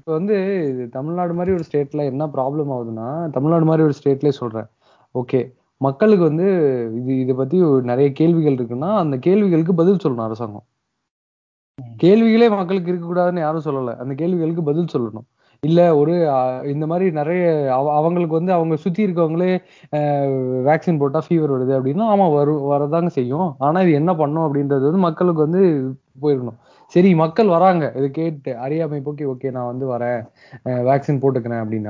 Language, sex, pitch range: Tamil, male, 140-185 Hz